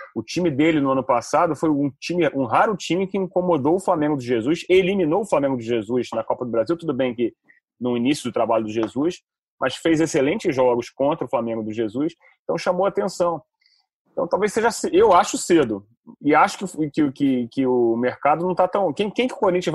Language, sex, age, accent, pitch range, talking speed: Portuguese, male, 30-49, Brazilian, 135-195 Hz, 205 wpm